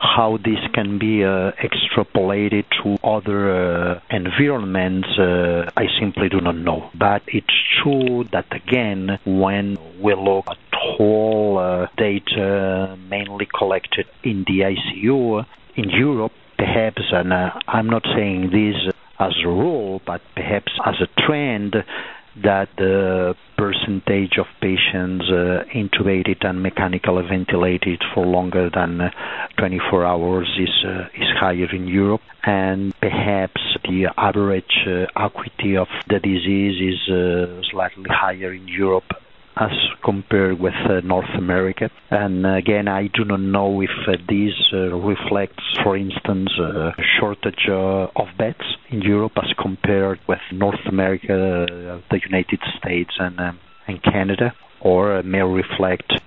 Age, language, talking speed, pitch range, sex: 50-69, English, 135 wpm, 90-105 Hz, male